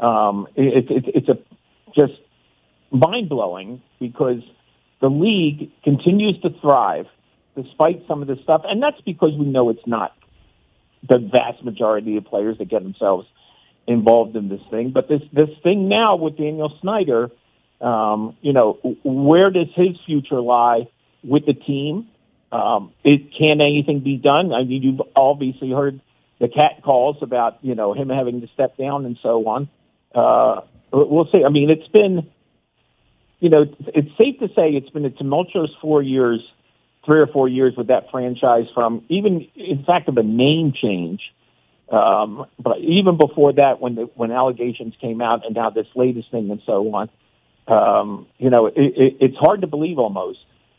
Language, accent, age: English, American, 50-69